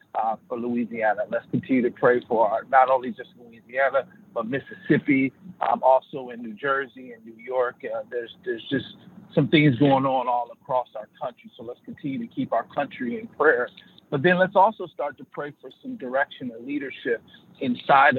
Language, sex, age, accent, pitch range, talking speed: English, male, 50-69, American, 130-205 Hz, 190 wpm